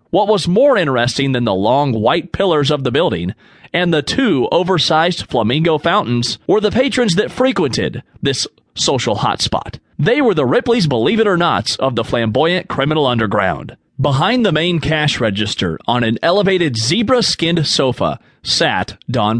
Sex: male